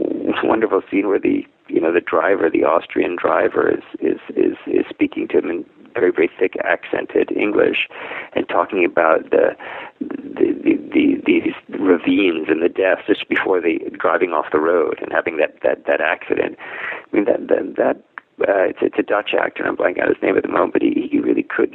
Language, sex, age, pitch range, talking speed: English, male, 40-59, 325-445 Hz, 205 wpm